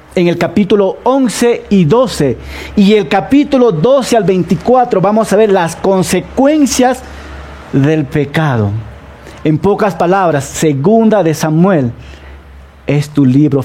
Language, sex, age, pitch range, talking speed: Spanish, male, 40-59, 125-200 Hz, 125 wpm